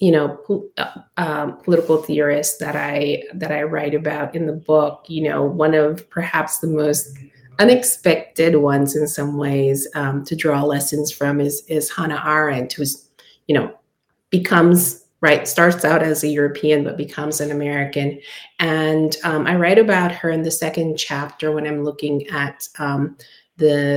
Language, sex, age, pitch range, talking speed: English, female, 30-49, 145-160 Hz, 165 wpm